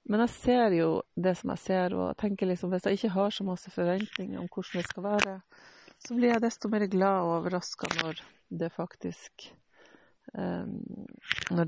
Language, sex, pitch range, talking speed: English, female, 175-200 Hz, 180 wpm